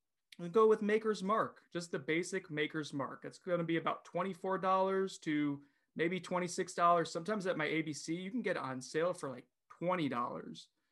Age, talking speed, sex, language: 30-49, 190 wpm, male, English